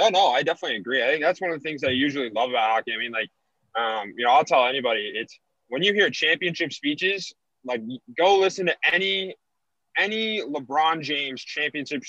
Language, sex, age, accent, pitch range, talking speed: English, male, 20-39, American, 145-200 Hz, 205 wpm